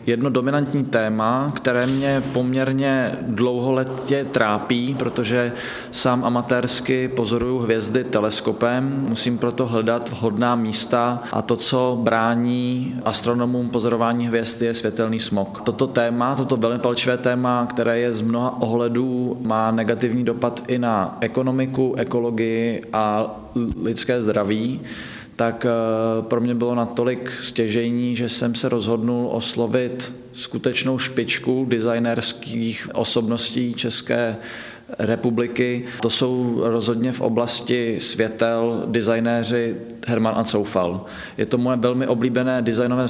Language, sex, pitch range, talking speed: Czech, male, 115-125 Hz, 115 wpm